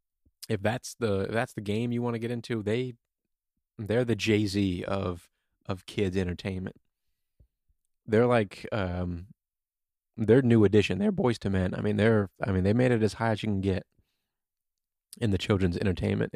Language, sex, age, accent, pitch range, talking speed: English, male, 20-39, American, 95-110 Hz, 175 wpm